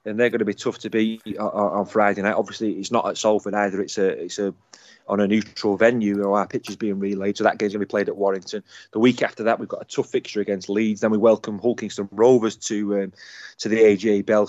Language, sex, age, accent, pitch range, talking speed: English, male, 20-39, British, 105-125 Hz, 260 wpm